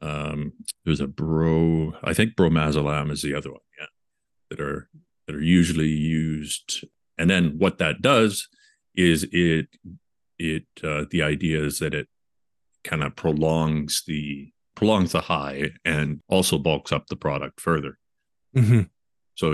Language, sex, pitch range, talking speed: English, male, 75-90 Hz, 145 wpm